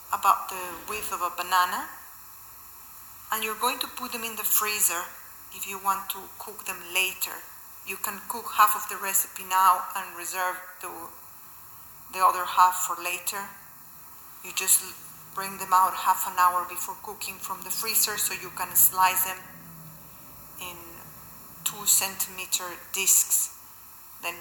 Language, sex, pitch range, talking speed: English, female, 180-210 Hz, 150 wpm